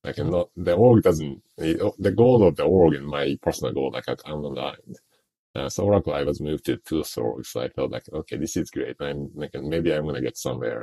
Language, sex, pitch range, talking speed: English, male, 75-100 Hz, 240 wpm